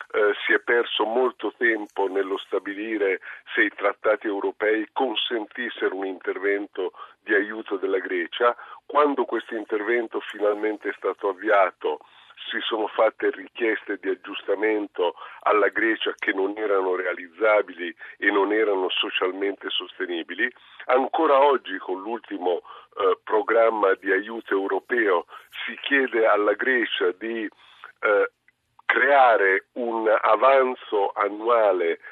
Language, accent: Italian, native